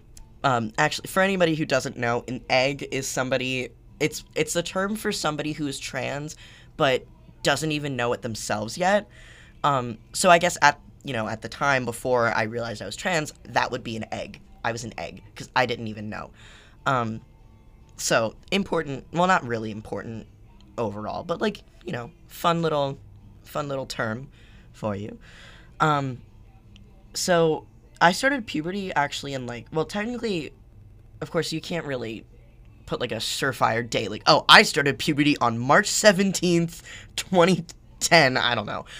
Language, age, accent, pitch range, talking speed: English, 10-29, American, 115-160 Hz, 165 wpm